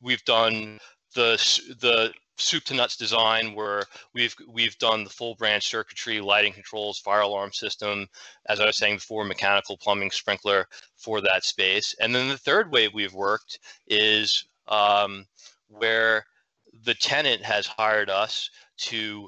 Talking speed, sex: 150 wpm, male